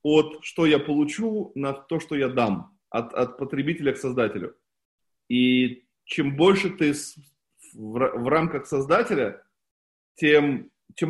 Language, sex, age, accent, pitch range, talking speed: Russian, male, 20-39, native, 125-165 Hz, 125 wpm